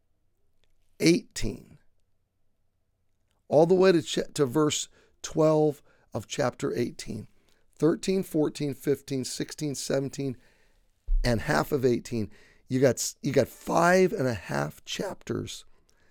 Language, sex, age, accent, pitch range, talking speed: English, male, 40-59, American, 110-160 Hz, 110 wpm